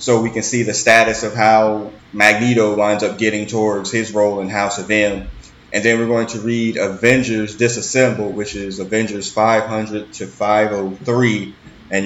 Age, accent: 20-39, American